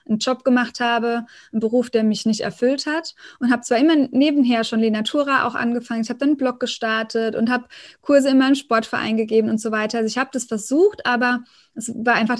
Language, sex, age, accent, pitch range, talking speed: German, female, 20-39, German, 220-255 Hz, 220 wpm